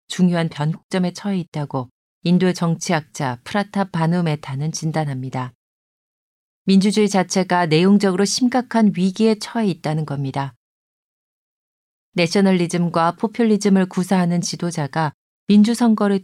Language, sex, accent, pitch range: Korean, female, native, 155-195 Hz